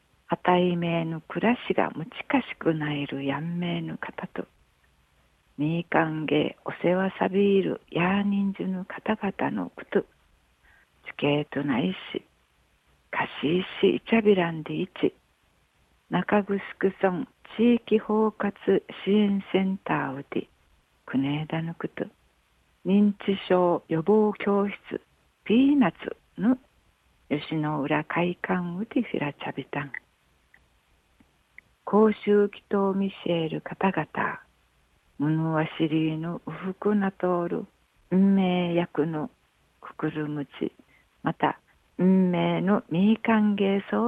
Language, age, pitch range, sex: Japanese, 60-79, 150-200 Hz, female